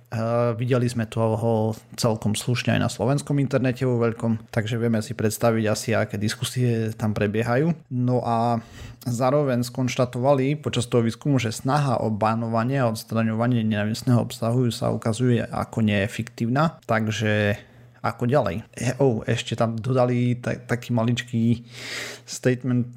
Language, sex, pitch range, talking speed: Slovak, male, 110-125 Hz, 130 wpm